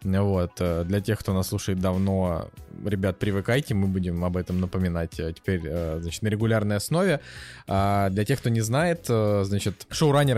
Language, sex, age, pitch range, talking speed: Russian, male, 20-39, 95-120 Hz, 150 wpm